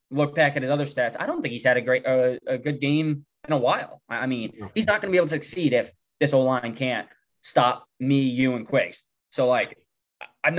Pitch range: 125-155 Hz